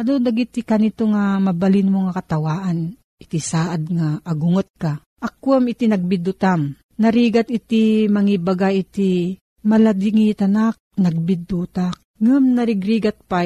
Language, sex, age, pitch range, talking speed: Filipino, female, 40-59, 175-220 Hz, 115 wpm